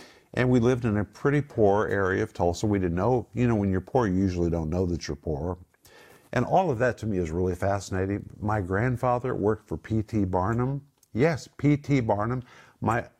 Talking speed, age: 200 wpm, 50-69